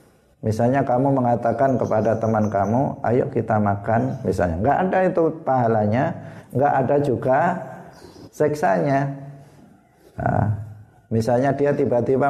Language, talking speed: Indonesian, 105 wpm